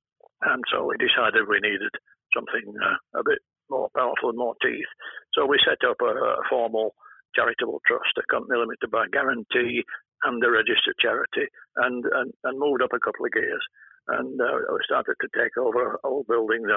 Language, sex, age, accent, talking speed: English, male, 60-79, British, 185 wpm